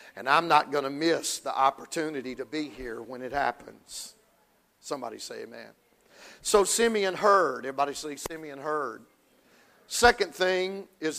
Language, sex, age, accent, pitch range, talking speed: English, male, 50-69, American, 155-195 Hz, 145 wpm